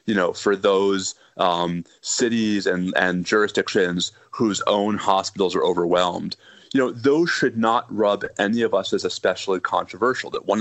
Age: 30-49